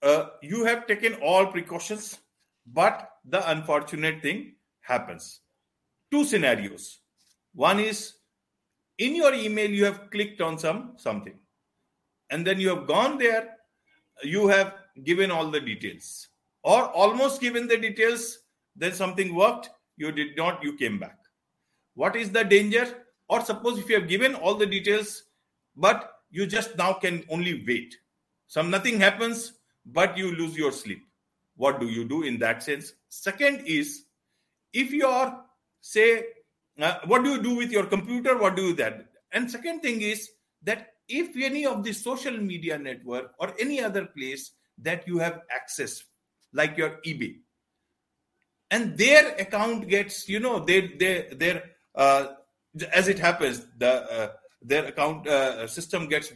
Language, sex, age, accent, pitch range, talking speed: English, male, 50-69, Indian, 165-230 Hz, 155 wpm